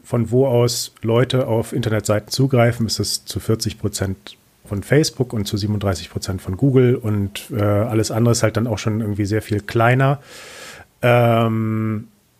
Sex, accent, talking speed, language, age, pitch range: male, German, 160 wpm, German, 40-59, 105-125 Hz